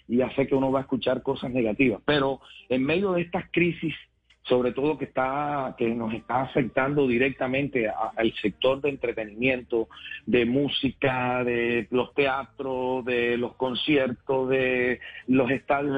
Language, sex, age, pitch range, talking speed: Spanish, male, 40-59, 120-145 Hz, 145 wpm